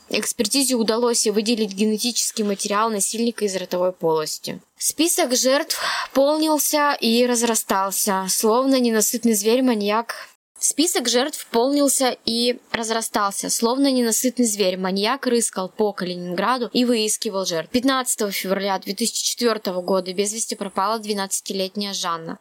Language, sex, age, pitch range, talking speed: Russian, female, 20-39, 200-245 Hz, 110 wpm